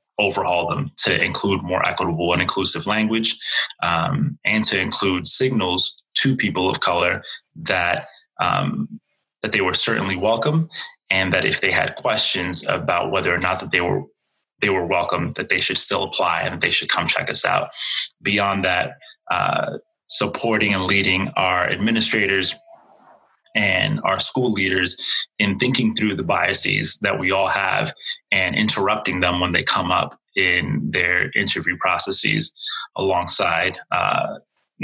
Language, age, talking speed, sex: English, 20-39, 150 wpm, male